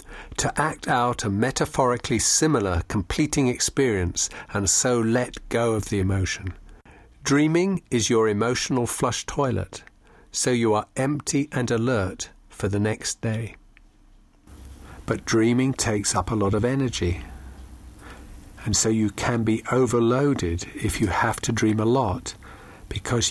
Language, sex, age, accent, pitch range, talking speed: English, male, 50-69, British, 95-115 Hz, 135 wpm